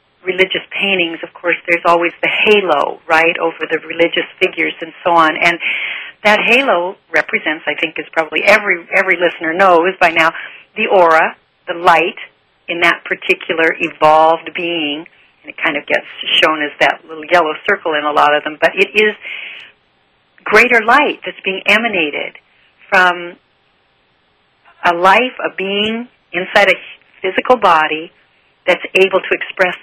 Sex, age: female, 40-59